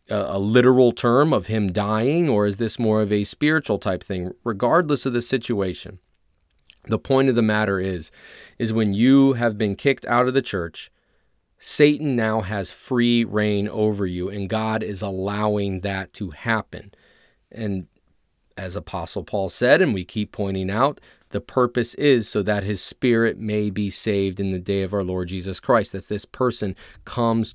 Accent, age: American, 30-49